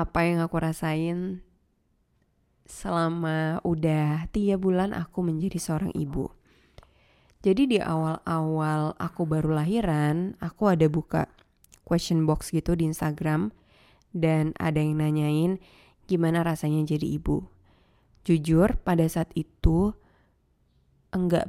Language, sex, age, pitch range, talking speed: Indonesian, female, 20-39, 155-180 Hz, 110 wpm